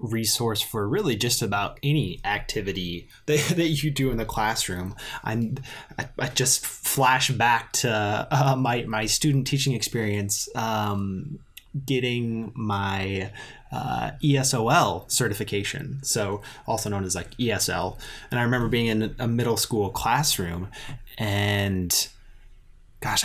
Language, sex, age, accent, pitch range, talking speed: English, male, 20-39, American, 100-130 Hz, 130 wpm